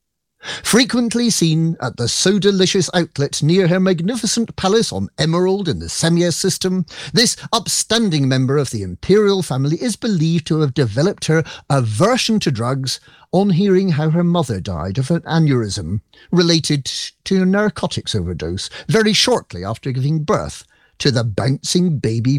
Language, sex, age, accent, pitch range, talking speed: English, male, 50-69, British, 130-190 Hz, 145 wpm